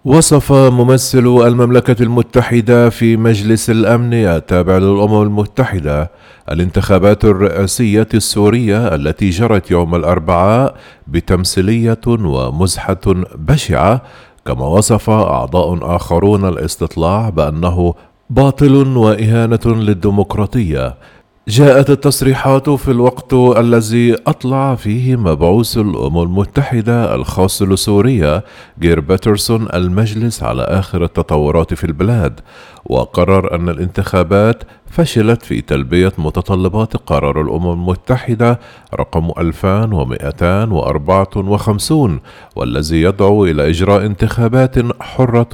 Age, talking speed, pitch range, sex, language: 40-59, 90 wpm, 85-115 Hz, male, Arabic